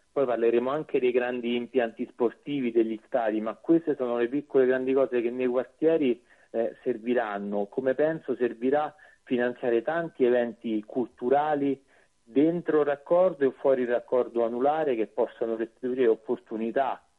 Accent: native